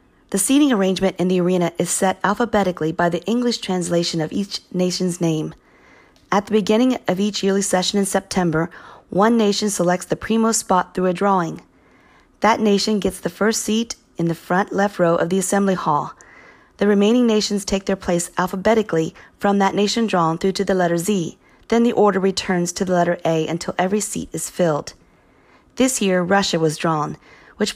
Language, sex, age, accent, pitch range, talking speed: English, female, 40-59, American, 175-210 Hz, 185 wpm